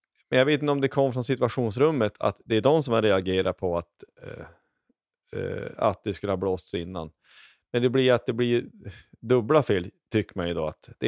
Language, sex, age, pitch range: Swedish, male, 30-49, 100-130 Hz